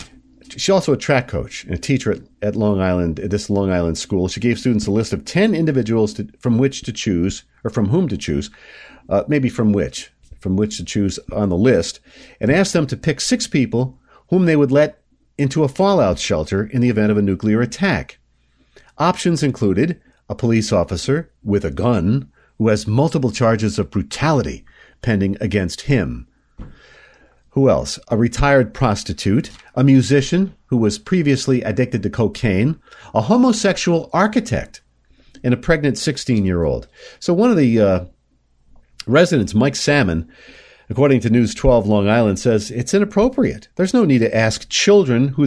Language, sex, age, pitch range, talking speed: English, male, 50-69, 105-145 Hz, 170 wpm